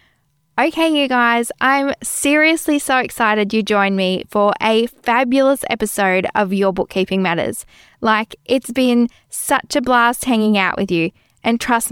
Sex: female